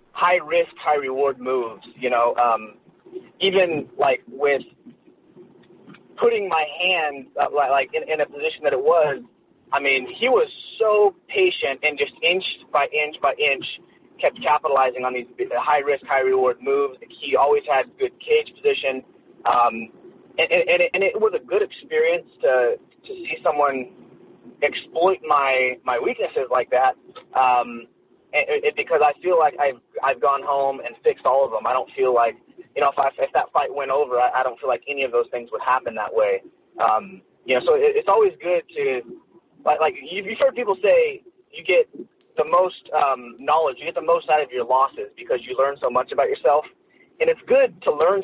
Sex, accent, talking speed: male, American, 190 wpm